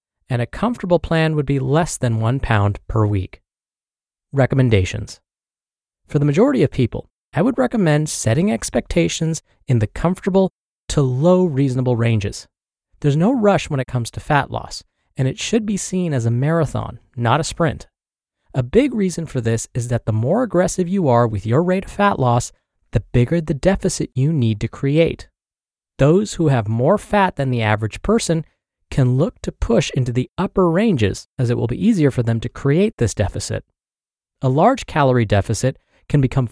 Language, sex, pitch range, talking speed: English, male, 115-175 Hz, 180 wpm